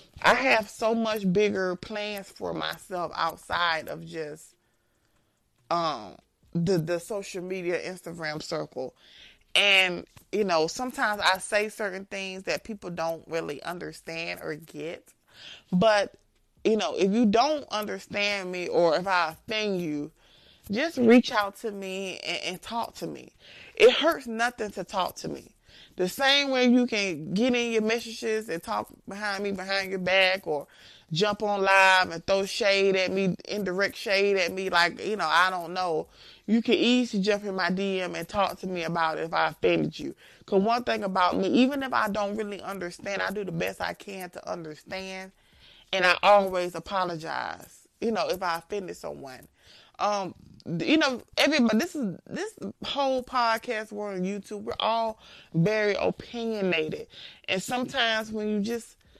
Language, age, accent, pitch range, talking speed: English, 30-49, American, 180-225 Hz, 165 wpm